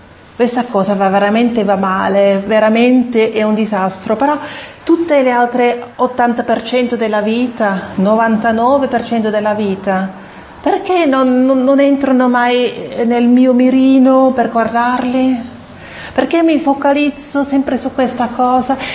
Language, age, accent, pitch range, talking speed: Italian, 40-59, native, 215-265 Hz, 120 wpm